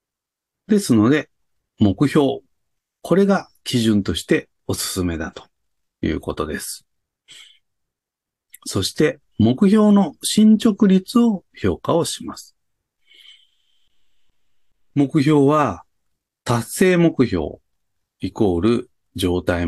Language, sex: Japanese, male